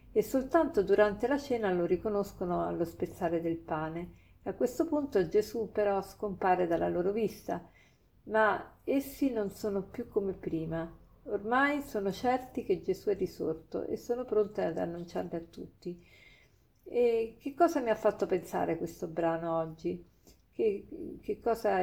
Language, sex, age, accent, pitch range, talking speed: Italian, female, 50-69, native, 175-215 Hz, 150 wpm